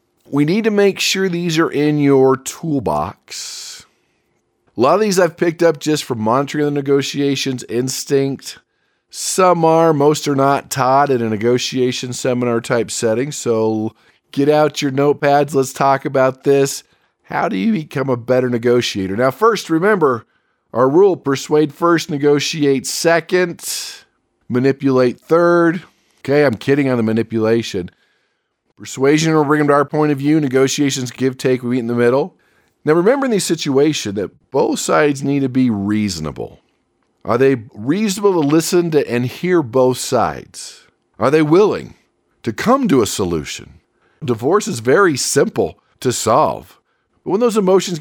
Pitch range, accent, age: 130-165 Hz, American, 40-59